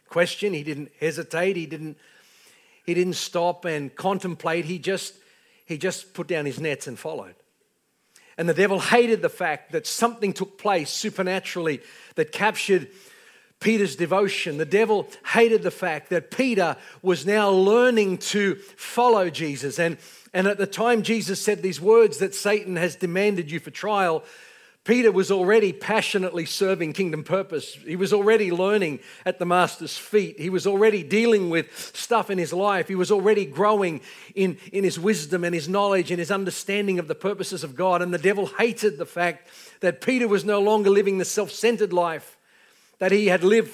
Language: English